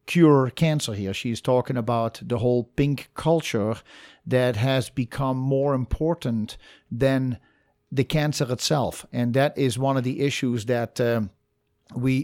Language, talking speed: English, 140 wpm